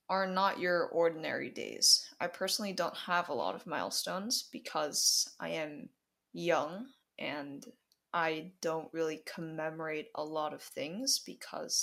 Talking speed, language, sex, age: 135 wpm, English, female, 20-39